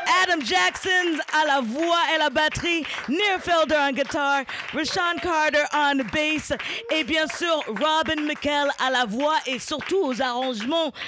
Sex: female